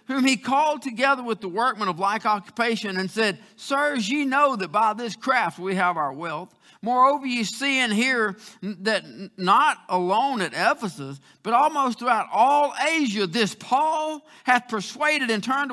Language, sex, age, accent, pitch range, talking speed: English, male, 50-69, American, 195-265 Hz, 170 wpm